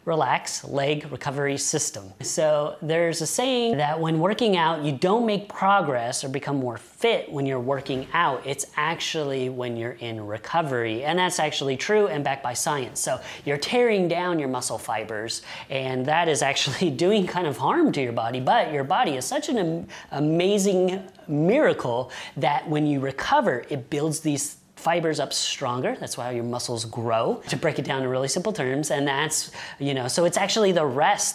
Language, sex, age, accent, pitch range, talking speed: English, female, 30-49, American, 135-185 Hz, 185 wpm